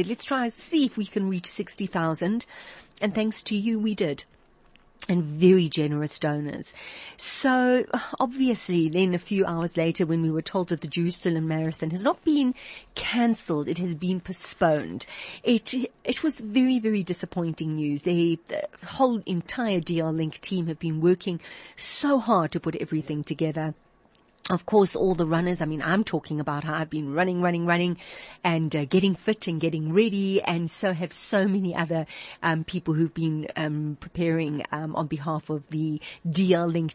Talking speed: 175 wpm